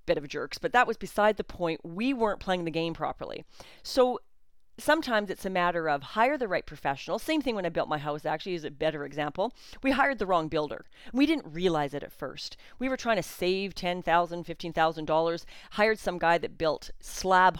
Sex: female